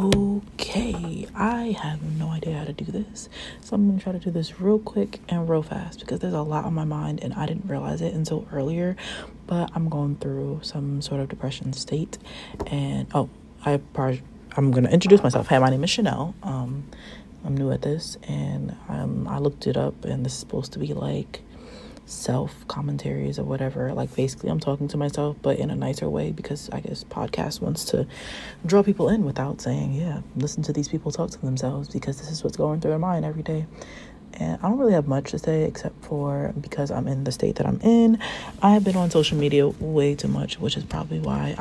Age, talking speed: 30-49, 220 wpm